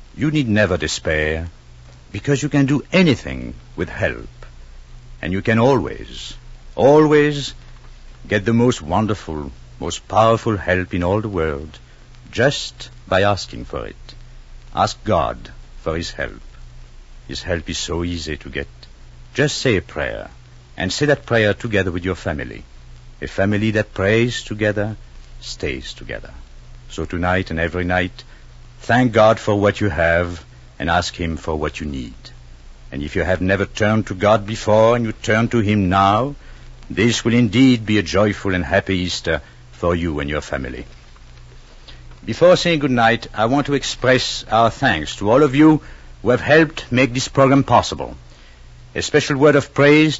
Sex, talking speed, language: male, 165 wpm, English